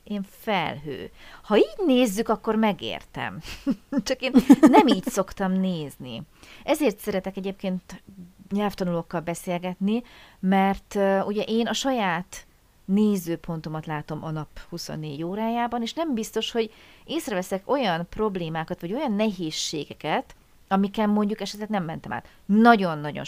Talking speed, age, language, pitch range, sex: 120 wpm, 30-49, Hungarian, 170-220 Hz, female